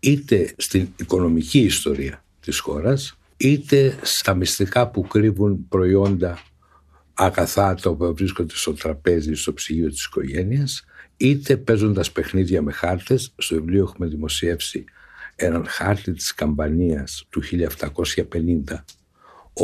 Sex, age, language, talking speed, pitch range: male, 60-79, Greek, 115 wpm, 80-120 Hz